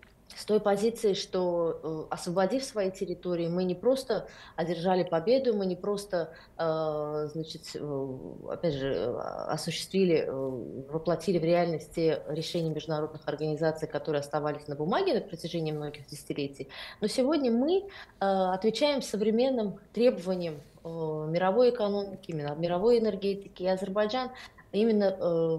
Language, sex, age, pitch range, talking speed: Russian, female, 20-39, 160-215 Hz, 110 wpm